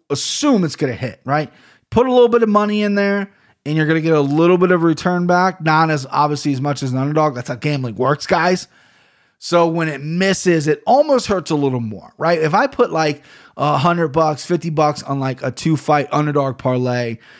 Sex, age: male, 20-39